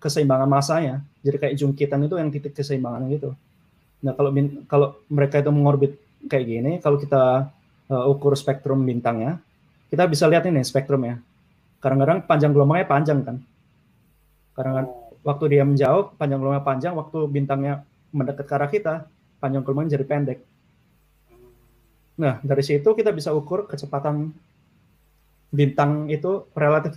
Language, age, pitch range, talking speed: Indonesian, 20-39, 135-150 Hz, 140 wpm